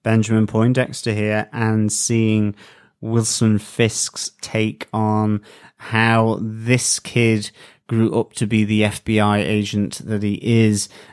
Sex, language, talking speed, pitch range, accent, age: male, English, 120 wpm, 105-115 Hz, British, 30-49